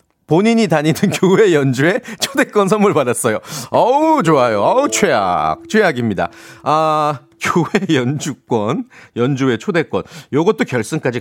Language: Korean